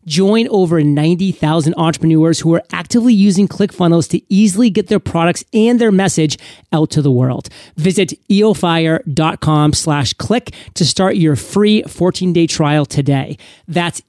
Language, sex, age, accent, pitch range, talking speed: English, male, 30-49, American, 150-195 Hz, 130 wpm